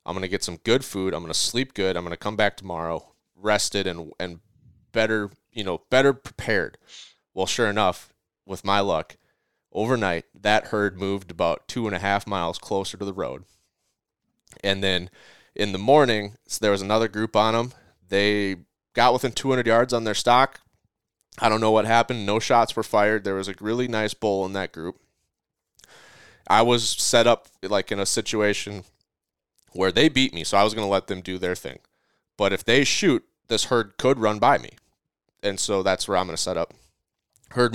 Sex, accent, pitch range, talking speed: male, American, 95-115 Hz, 200 wpm